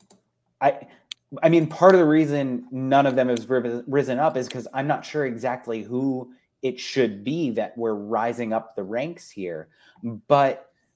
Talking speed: 170 wpm